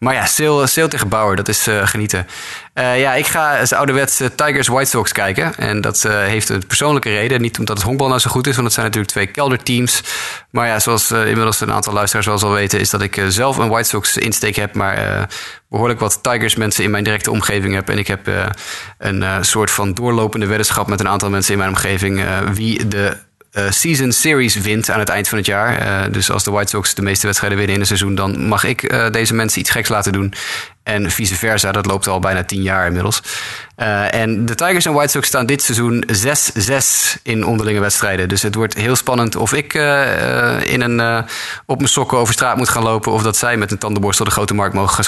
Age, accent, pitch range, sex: 20-39, Dutch, 100-120 Hz, male